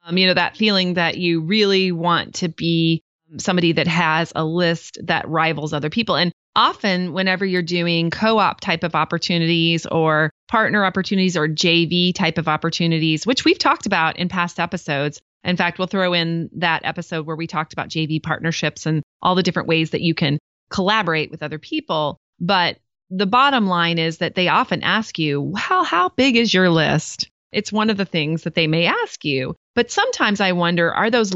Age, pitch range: 30-49, 165-205 Hz